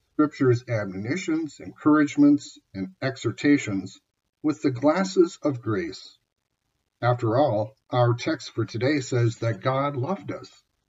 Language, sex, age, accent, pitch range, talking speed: English, male, 50-69, American, 115-145 Hz, 115 wpm